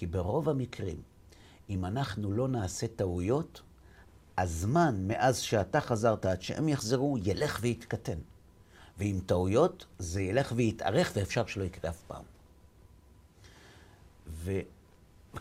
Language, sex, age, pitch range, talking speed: Hebrew, male, 60-79, 90-125 Hz, 110 wpm